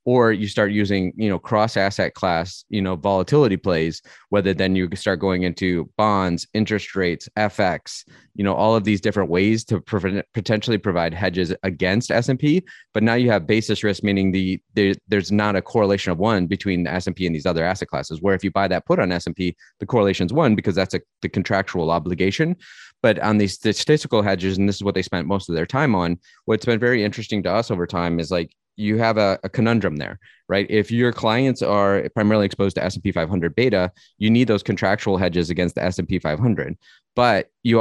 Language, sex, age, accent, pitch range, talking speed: English, male, 30-49, American, 90-110 Hz, 225 wpm